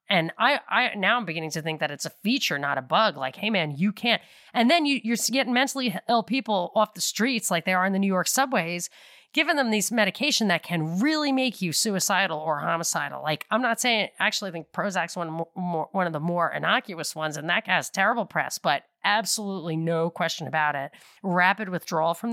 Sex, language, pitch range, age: female, English, 170-225 Hz, 30-49